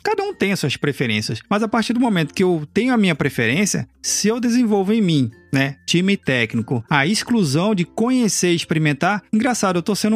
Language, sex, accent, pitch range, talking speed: Portuguese, male, Brazilian, 160-215 Hz, 200 wpm